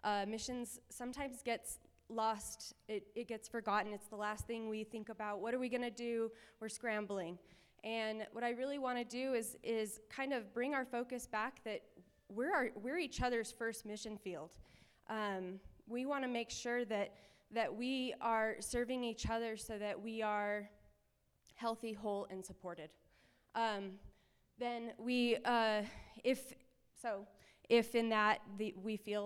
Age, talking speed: 20-39, 165 wpm